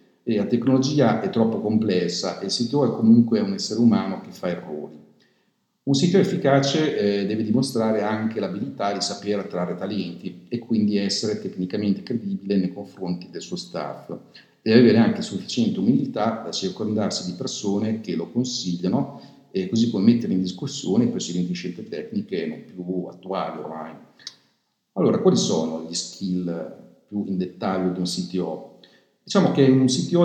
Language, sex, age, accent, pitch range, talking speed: Italian, male, 50-69, native, 90-130 Hz, 160 wpm